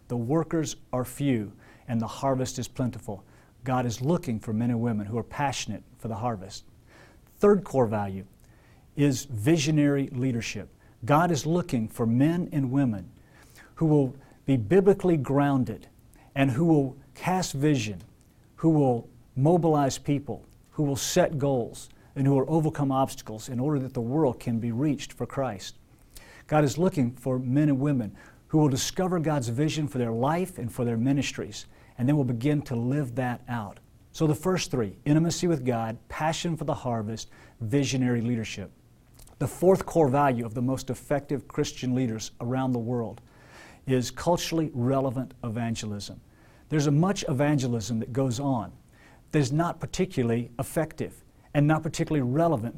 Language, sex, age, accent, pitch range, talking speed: English, male, 50-69, American, 120-150 Hz, 160 wpm